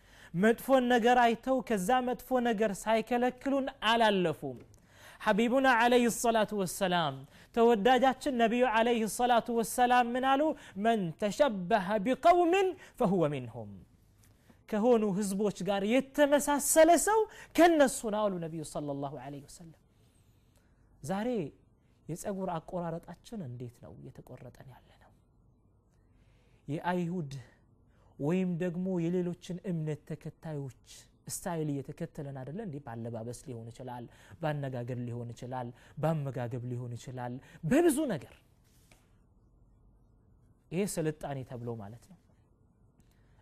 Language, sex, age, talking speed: Amharic, male, 30-49, 85 wpm